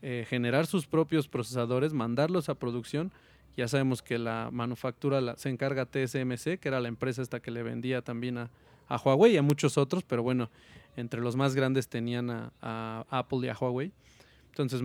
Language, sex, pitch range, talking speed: Spanish, male, 120-150 Hz, 185 wpm